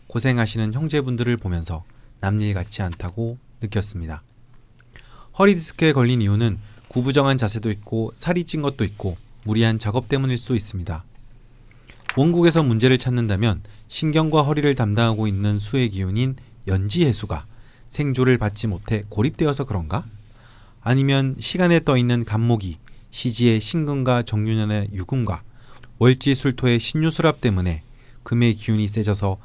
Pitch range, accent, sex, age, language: 105-130 Hz, native, male, 30-49, Korean